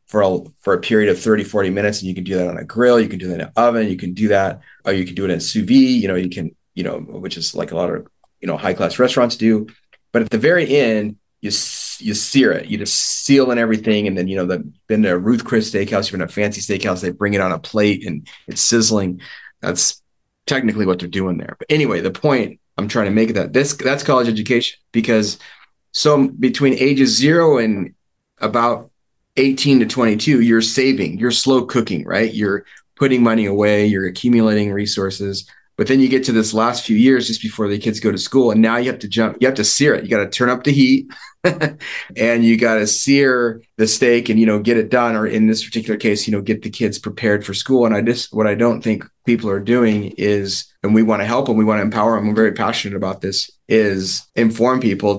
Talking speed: 245 wpm